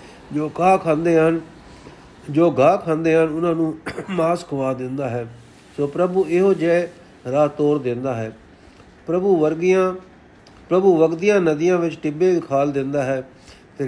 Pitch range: 135-175 Hz